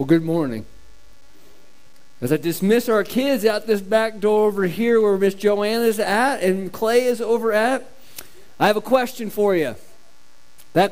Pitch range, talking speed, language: 175-225 Hz, 170 wpm, English